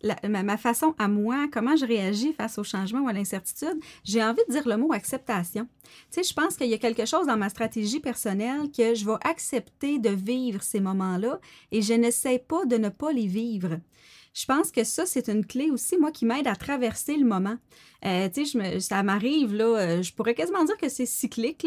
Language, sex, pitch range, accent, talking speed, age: French, female, 220-265 Hz, Canadian, 225 wpm, 30-49